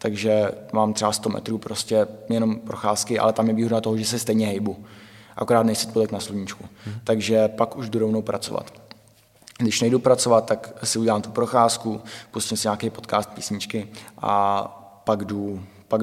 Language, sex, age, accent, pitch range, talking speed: Czech, male, 20-39, native, 105-115 Hz, 170 wpm